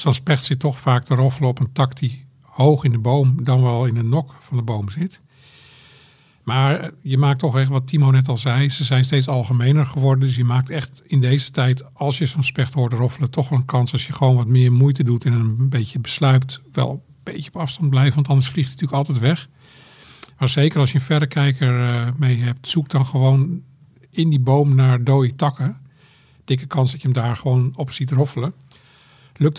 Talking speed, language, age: 220 wpm, Dutch, 50-69